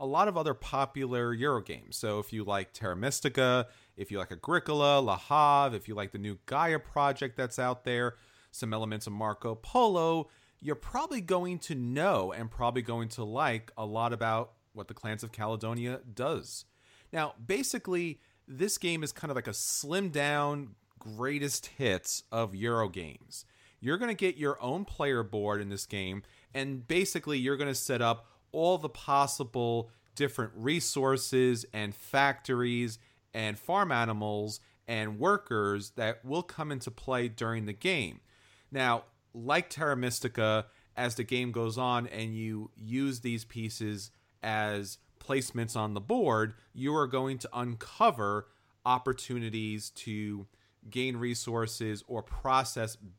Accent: American